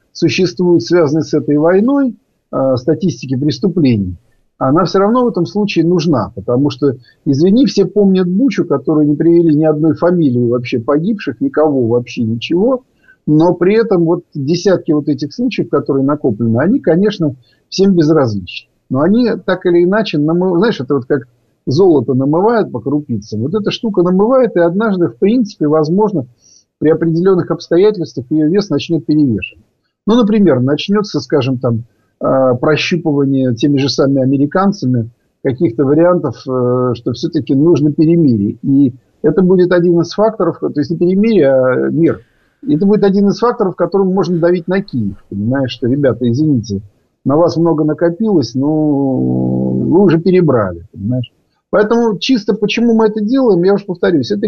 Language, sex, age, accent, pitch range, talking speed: Russian, male, 50-69, native, 135-190 Hz, 150 wpm